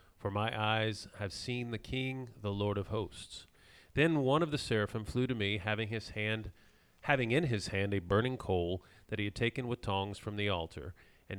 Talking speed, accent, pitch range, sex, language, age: 205 wpm, American, 95-125 Hz, male, English, 40-59